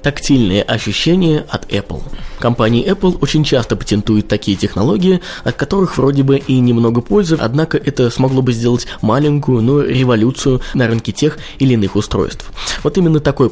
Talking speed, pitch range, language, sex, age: 155 wpm, 110-150 Hz, Russian, male, 20-39